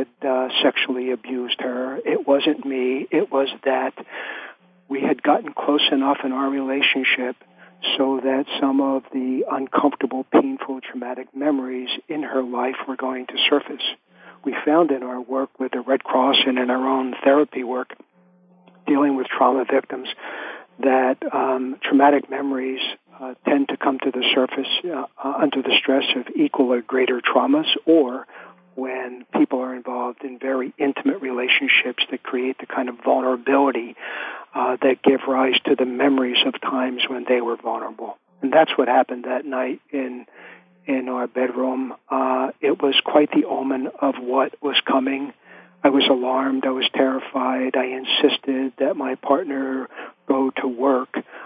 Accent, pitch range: American, 130-140 Hz